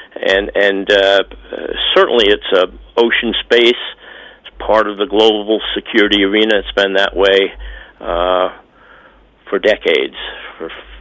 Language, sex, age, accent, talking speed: English, male, 60-79, American, 135 wpm